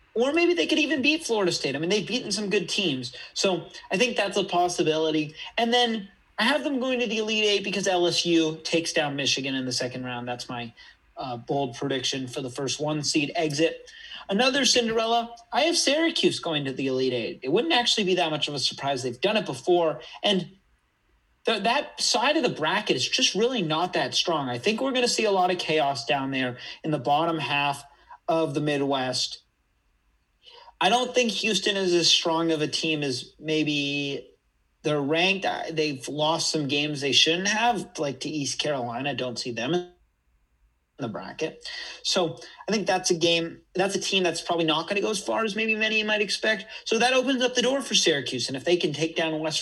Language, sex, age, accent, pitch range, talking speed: English, male, 30-49, American, 140-210 Hz, 210 wpm